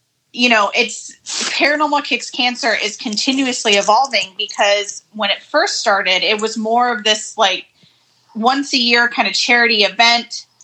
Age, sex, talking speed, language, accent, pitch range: 30-49, female, 150 wpm, English, American, 210-250 Hz